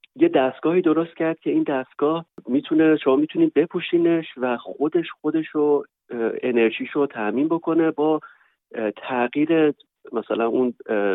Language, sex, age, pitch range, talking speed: Persian, male, 40-59, 115-155 Hz, 120 wpm